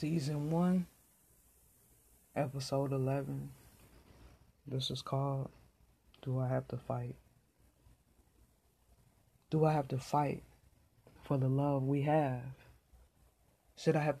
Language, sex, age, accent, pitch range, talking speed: English, female, 20-39, American, 125-150 Hz, 105 wpm